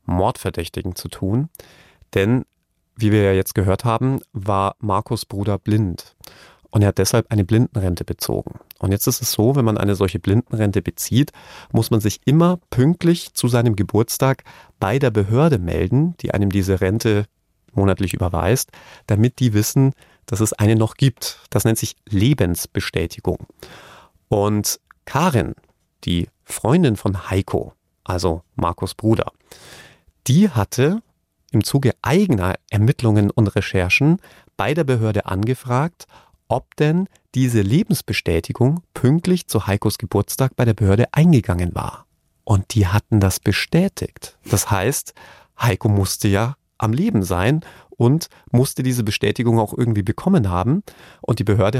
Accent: German